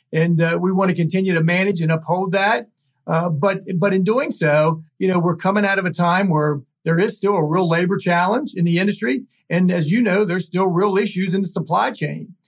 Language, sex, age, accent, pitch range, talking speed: English, male, 50-69, American, 160-195 Hz, 230 wpm